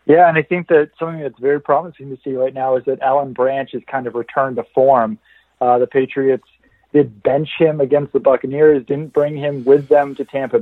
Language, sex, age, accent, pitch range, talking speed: English, male, 40-59, American, 135-165 Hz, 220 wpm